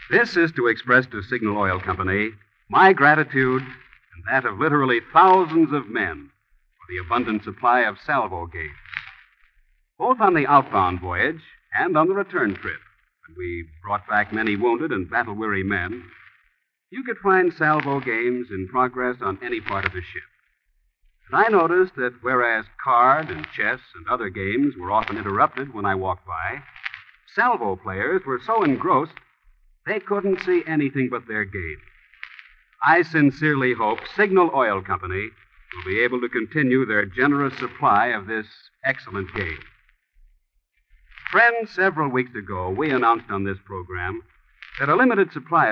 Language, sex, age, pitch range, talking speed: English, male, 50-69, 100-155 Hz, 155 wpm